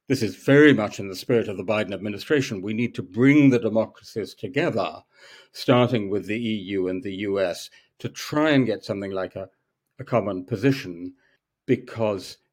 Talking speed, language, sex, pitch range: 175 wpm, English, male, 110-135 Hz